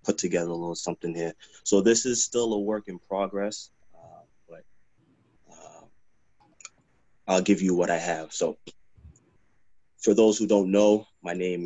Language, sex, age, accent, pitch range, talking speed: English, male, 20-39, American, 90-105 Hz, 160 wpm